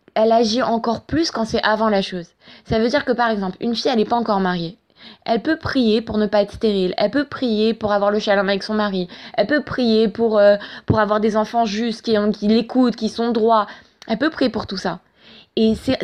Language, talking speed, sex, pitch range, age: French, 240 wpm, female, 210-260 Hz, 20-39